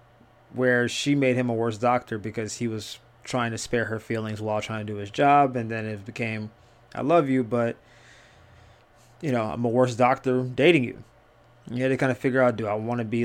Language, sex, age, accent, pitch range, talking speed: English, male, 20-39, American, 115-135 Hz, 225 wpm